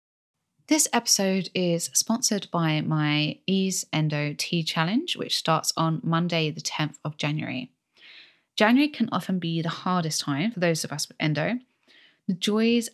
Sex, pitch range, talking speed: female, 155-210 Hz, 155 wpm